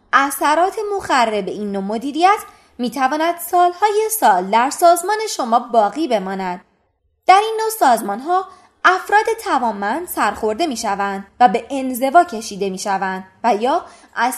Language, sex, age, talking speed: Persian, female, 20-39, 125 wpm